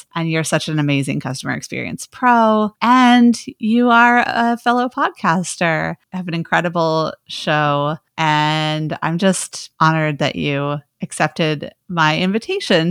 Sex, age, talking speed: female, 30-49, 130 wpm